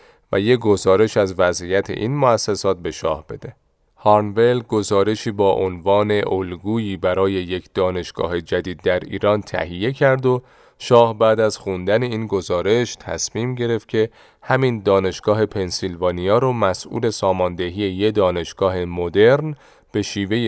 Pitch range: 90-110 Hz